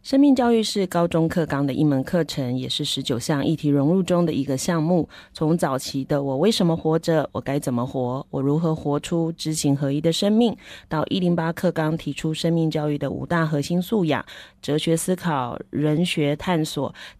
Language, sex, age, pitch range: Chinese, female, 30-49, 140-175 Hz